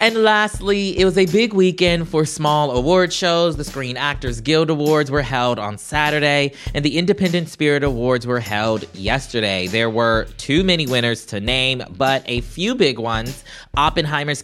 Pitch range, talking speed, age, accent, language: 115-165 Hz, 170 wpm, 20-39, American, English